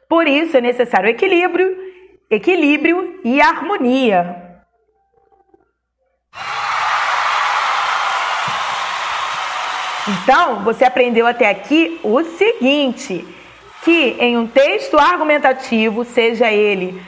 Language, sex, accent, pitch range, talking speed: Portuguese, female, Brazilian, 235-345 Hz, 75 wpm